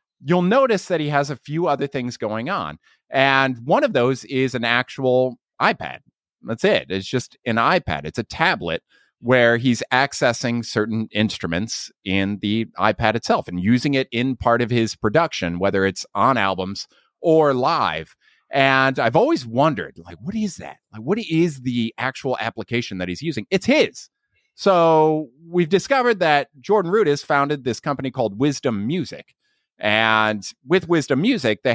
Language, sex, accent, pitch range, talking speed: English, male, American, 115-165 Hz, 165 wpm